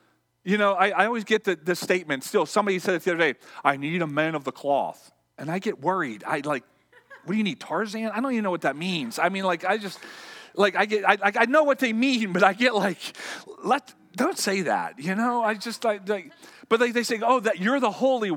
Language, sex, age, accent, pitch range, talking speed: English, male, 40-59, American, 190-255 Hz, 255 wpm